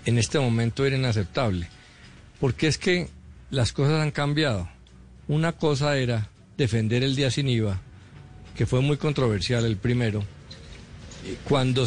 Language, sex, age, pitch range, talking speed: Spanish, male, 50-69, 105-140 Hz, 135 wpm